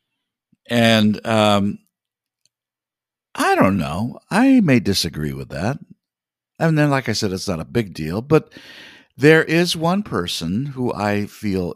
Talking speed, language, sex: 145 wpm, English, male